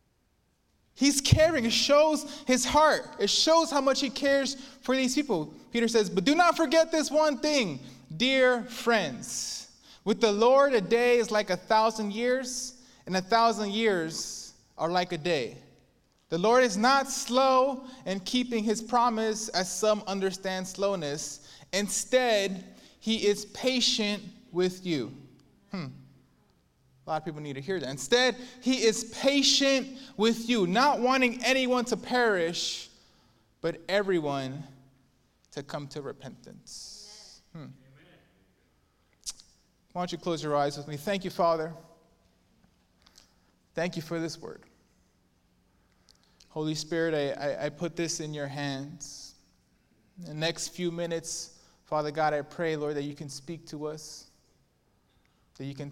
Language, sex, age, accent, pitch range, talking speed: English, male, 20-39, American, 145-245 Hz, 145 wpm